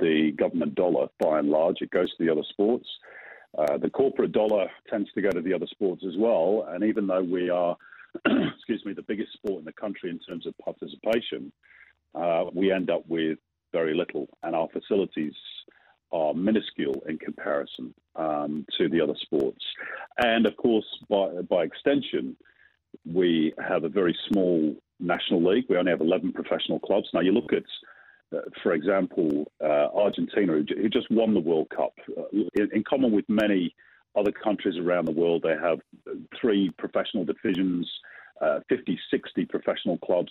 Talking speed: 175 wpm